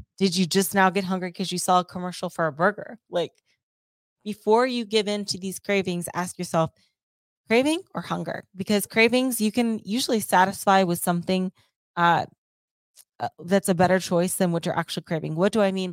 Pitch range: 175-200 Hz